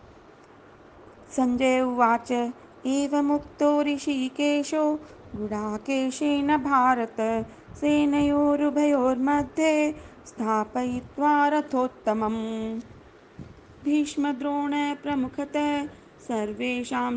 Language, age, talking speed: Hindi, 30-49, 45 wpm